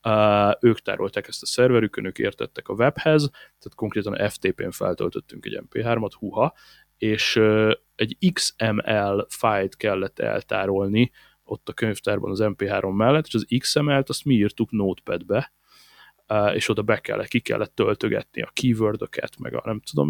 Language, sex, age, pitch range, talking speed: Hungarian, male, 30-49, 105-120 Hz, 150 wpm